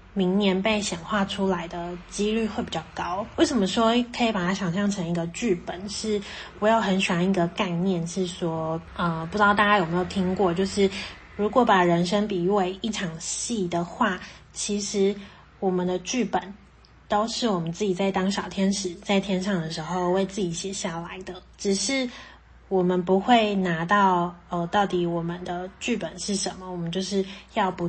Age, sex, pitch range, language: 20-39, female, 175-205 Hz, Chinese